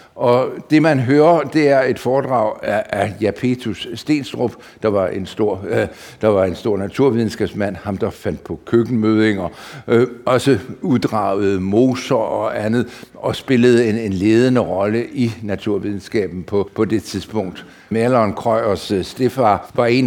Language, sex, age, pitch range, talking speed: Danish, male, 60-79, 110-145 Hz, 140 wpm